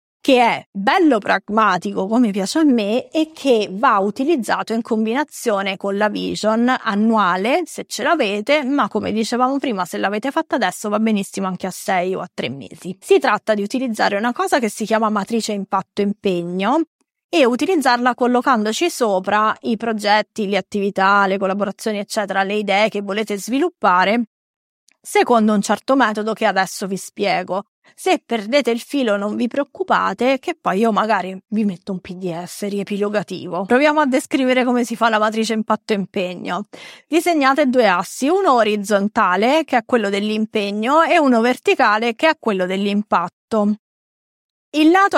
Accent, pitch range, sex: native, 205-265 Hz, female